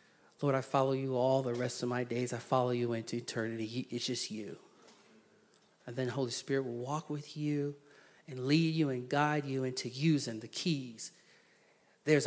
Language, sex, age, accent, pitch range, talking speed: English, male, 40-59, American, 140-225 Hz, 180 wpm